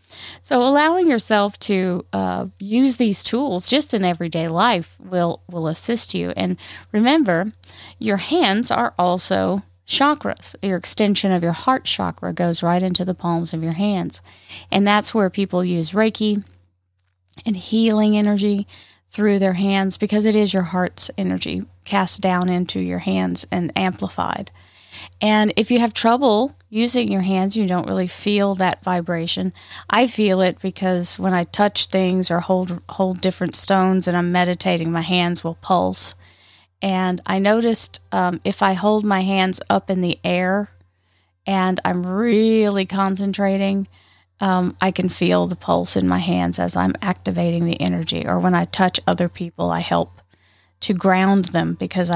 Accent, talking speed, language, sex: American, 160 wpm, English, female